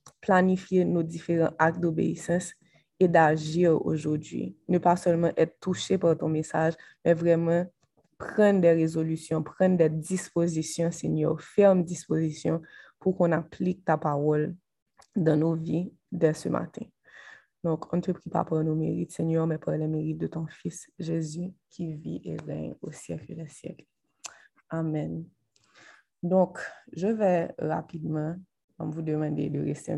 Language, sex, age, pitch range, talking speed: French, female, 20-39, 155-175 Hz, 150 wpm